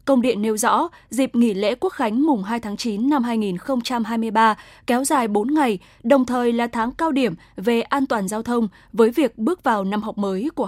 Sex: female